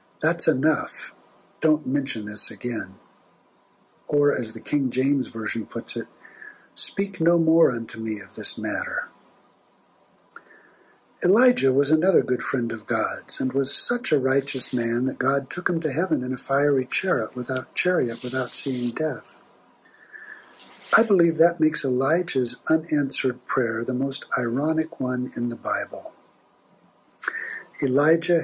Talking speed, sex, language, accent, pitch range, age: 135 wpm, male, English, American, 125-160 Hz, 60-79